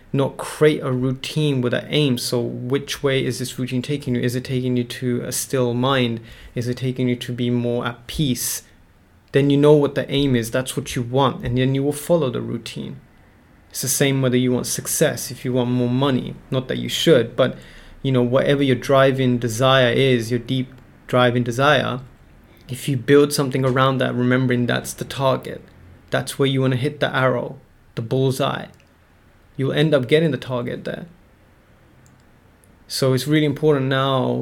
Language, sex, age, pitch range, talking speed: English, male, 20-39, 120-135 Hz, 190 wpm